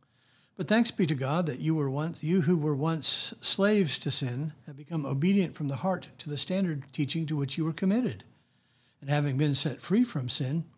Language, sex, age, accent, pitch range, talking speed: English, male, 60-79, American, 130-165 Hz, 210 wpm